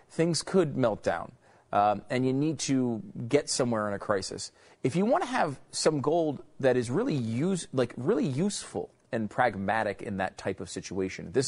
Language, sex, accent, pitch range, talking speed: English, male, American, 105-145 Hz, 190 wpm